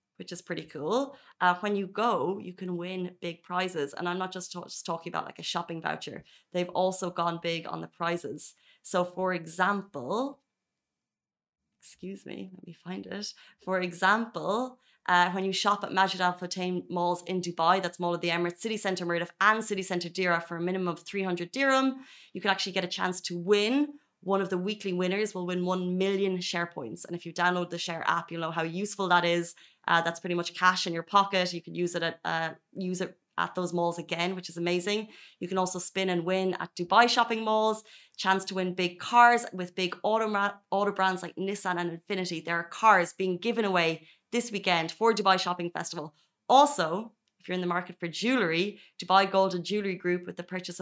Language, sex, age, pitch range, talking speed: Arabic, female, 30-49, 175-200 Hz, 215 wpm